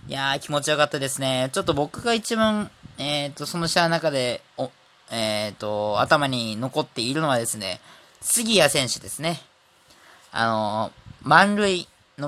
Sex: male